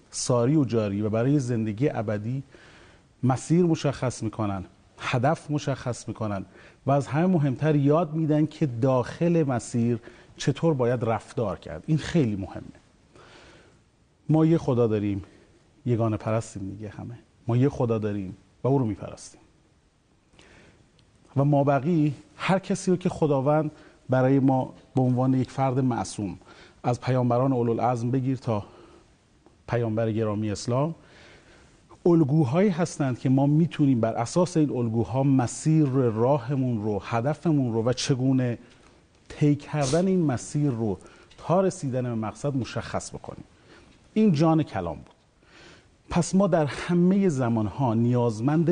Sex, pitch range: male, 115-150 Hz